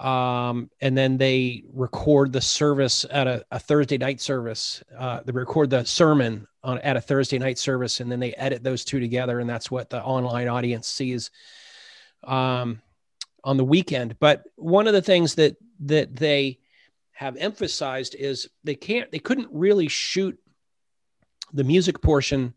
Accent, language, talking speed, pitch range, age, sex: American, English, 165 wpm, 125-150 Hz, 40-59, male